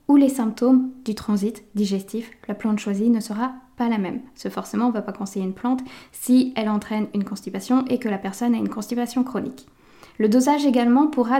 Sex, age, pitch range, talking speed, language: female, 10-29, 220-265 Hz, 210 wpm, French